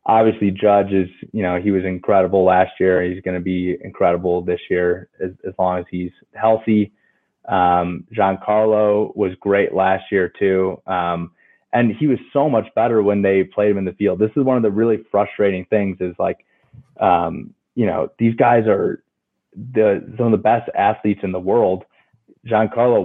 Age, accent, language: 20-39, American, English